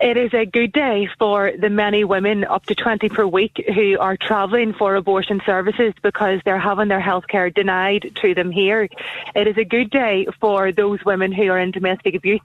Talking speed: 205 wpm